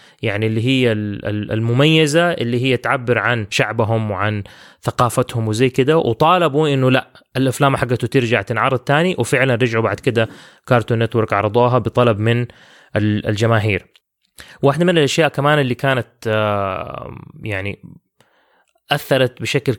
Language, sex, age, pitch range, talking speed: English, male, 20-39, 115-140 Hz, 120 wpm